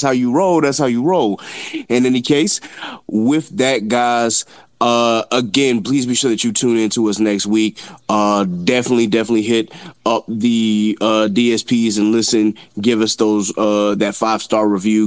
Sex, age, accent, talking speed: male, 20-39, American, 175 wpm